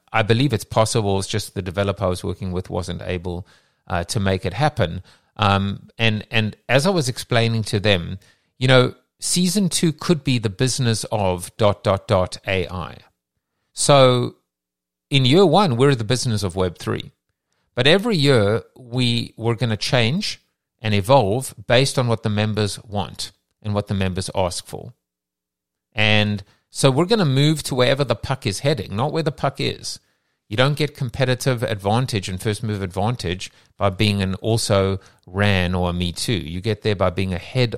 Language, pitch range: English, 95-125 Hz